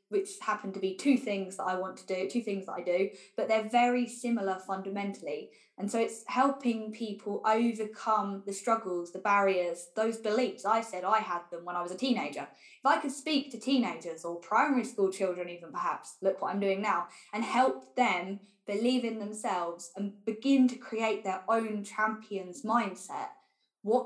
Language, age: English, 10-29